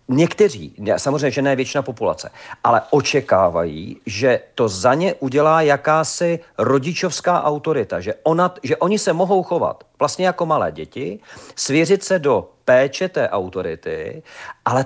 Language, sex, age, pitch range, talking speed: Czech, male, 40-59, 135-180 Hz, 135 wpm